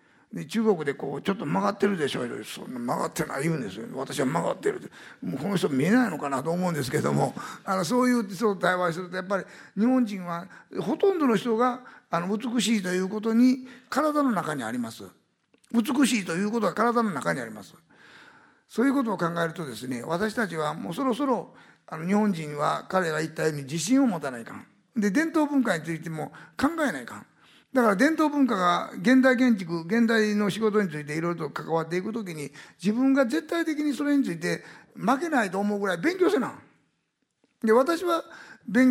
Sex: male